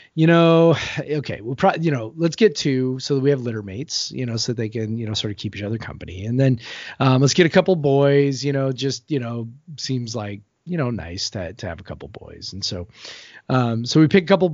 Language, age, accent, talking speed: English, 30-49, American, 260 wpm